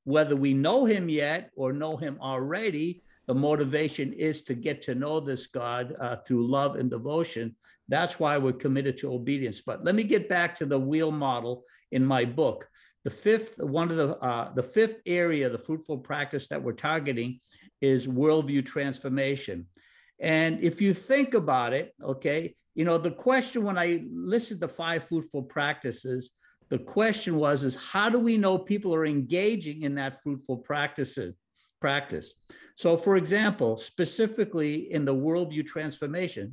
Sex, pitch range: male, 140-185 Hz